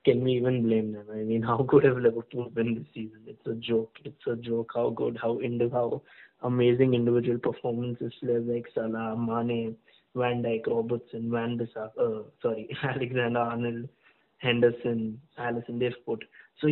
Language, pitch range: English, 115-125 Hz